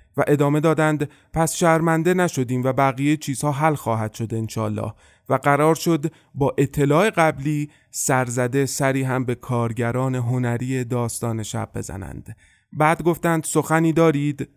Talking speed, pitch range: 130 wpm, 125-155 Hz